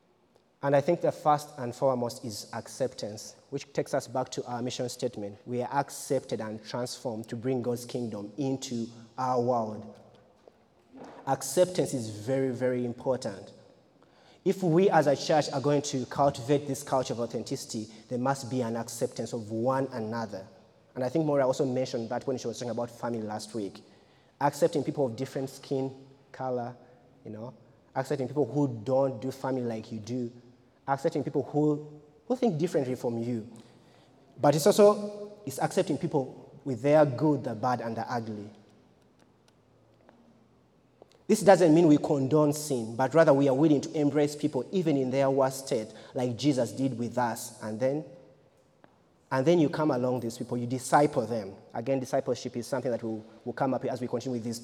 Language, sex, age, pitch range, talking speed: English, male, 30-49, 120-145 Hz, 175 wpm